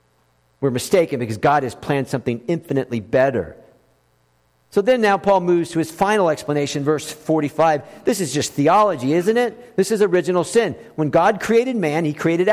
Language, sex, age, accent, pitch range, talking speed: English, male, 50-69, American, 155-215 Hz, 170 wpm